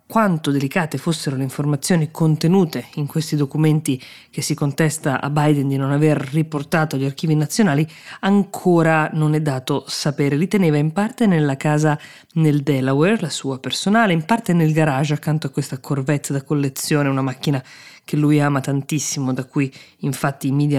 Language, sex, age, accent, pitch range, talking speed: Italian, female, 20-39, native, 140-165 Hz, 165 wpm